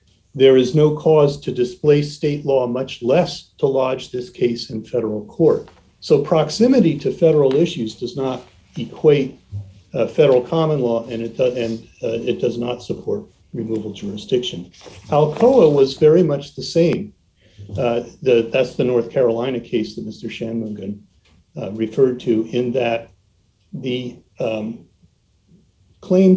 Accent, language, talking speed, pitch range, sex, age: American, English, 140 wpm, 110-145 Hz, male, 50-69